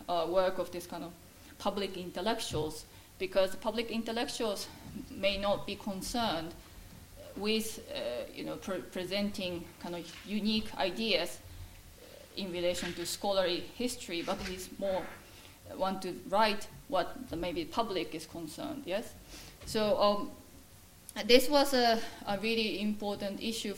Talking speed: 130 wpm